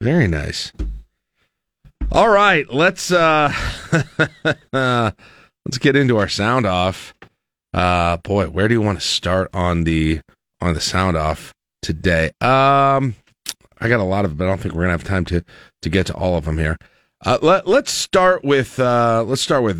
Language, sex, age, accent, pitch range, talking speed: English, male, 40-59, American, 85-110 Hz, 180 wpm